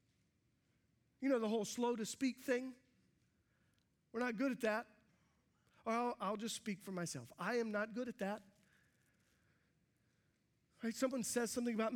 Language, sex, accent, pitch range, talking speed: English, male, American, 195-255 Hz, 145 wpm